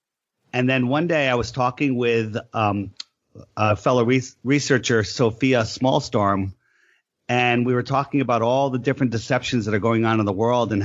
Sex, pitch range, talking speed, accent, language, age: male, 105-130 Hz, 170 wpm, American, English, 30-49